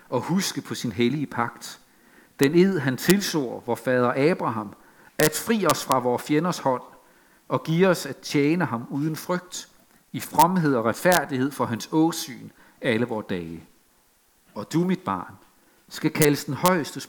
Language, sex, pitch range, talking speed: Danish, male, 120-165 Hz, 160 wpm